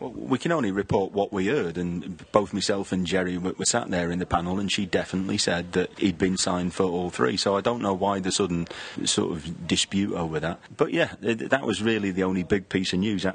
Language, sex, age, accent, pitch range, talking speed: English, male, 30-49, British, 90-100 Hz, 235 wpm